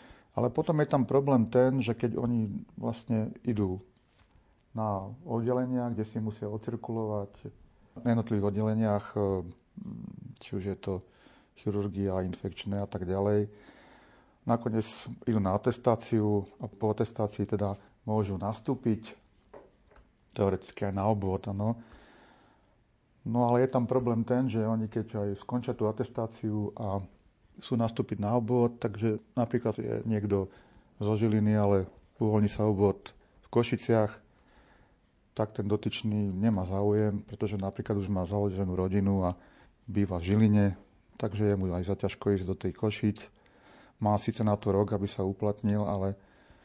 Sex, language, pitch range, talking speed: male, Slovak, 100-115 Hz, 135 wpm